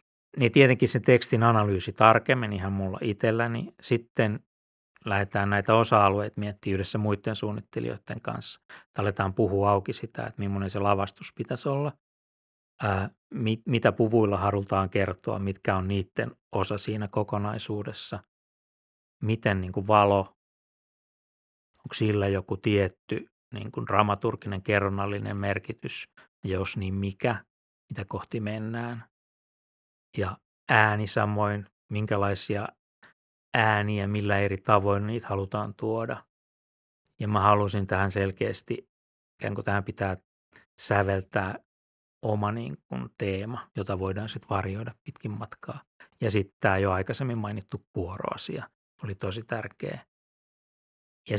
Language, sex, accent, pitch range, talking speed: Finnish, male, native, 100-115 Hz, 115 wpm